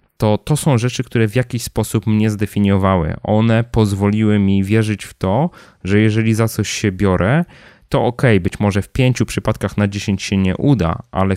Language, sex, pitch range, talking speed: Polish, male, 95-115 Hz, 185 wpm